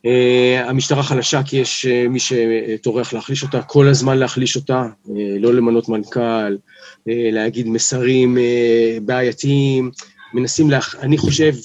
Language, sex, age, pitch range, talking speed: Hebrew, male, 40-59, 120-150 Hz, 140 wpm